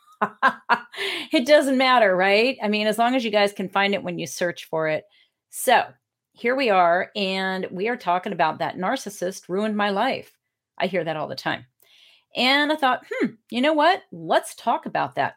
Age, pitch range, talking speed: 40-59, 170-235 Hz, 195 wpm